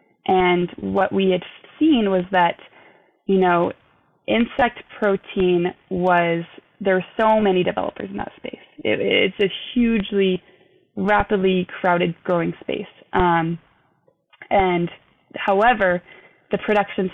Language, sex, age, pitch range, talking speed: English, female, 20-39, 175-200 Hz, 115 wpm